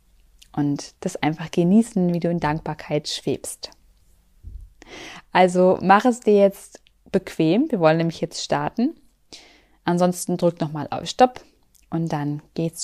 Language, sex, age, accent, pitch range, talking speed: German, female, 20-39, German, 110-185 Hz, 130 wpm